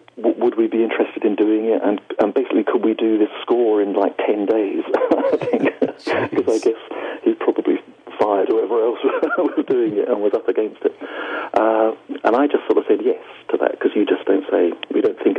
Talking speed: 220 wpm